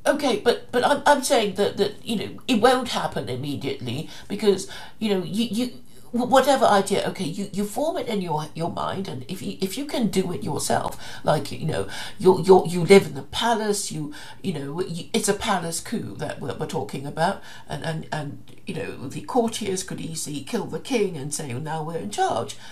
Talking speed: 215 wpm